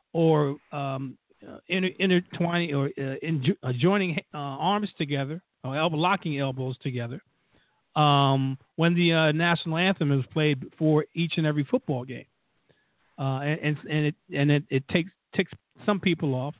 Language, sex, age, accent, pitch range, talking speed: English, male, 50-69, American, 140-165 Hz, 150 wpm